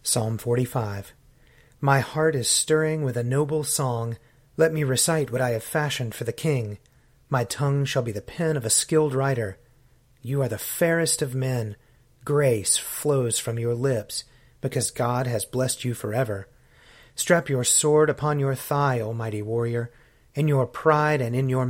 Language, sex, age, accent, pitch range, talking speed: English, male, 30-49, American, 120-140 Hz, 170 wpm